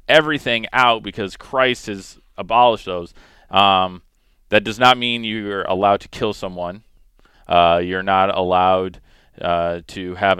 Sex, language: male, English